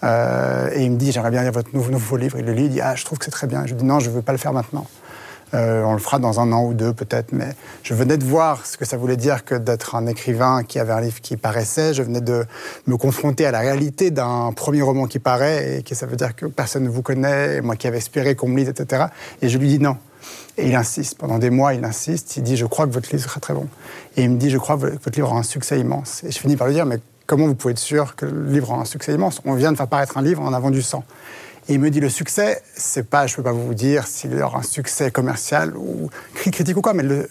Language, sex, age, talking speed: French, male, 30-49, 300 wpm